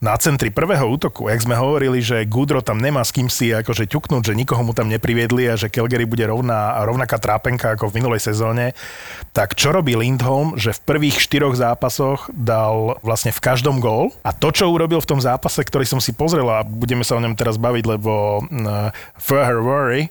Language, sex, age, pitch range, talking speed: Slovak, male, 30-49, 115-145 Hz, 205 wpm